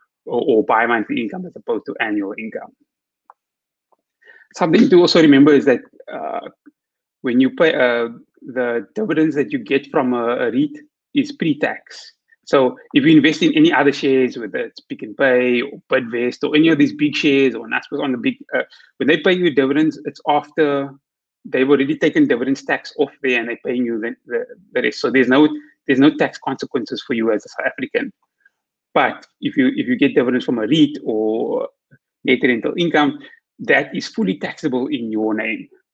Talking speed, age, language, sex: 190 wpm, 30-49, English, male